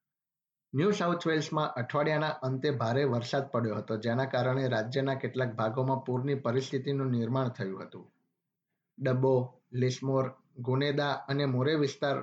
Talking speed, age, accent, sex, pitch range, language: 125 wpm, 50-69, native, male, 130-150 Hz, Gujarati